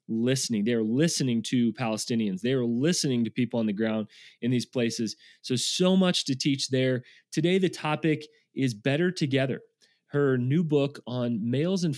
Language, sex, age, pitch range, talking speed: English, male, 30-49, 120-150 Hz, 170 wpm